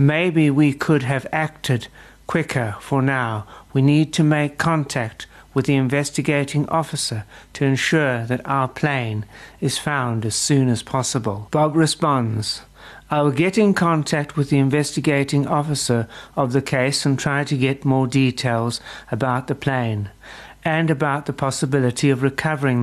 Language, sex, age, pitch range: English, male, 60-79, 125-155 Hz